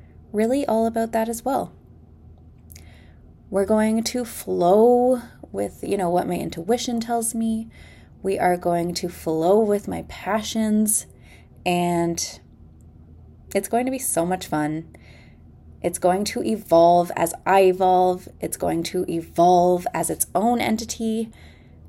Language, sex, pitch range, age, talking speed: English, female, 140-205 Hz, 20-39, 135 wpm